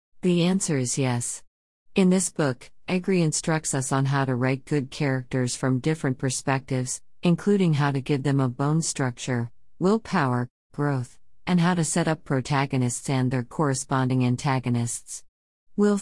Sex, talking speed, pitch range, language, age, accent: female, 150 wpm, 135-170 Hz, English, 50-69, American